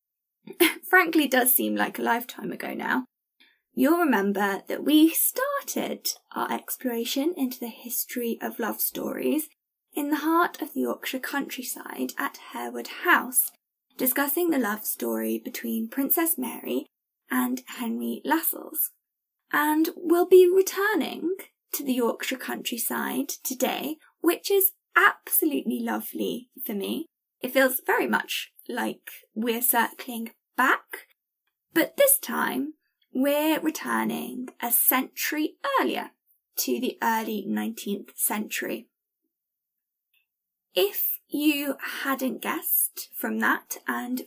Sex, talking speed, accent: female, 115 wpm, British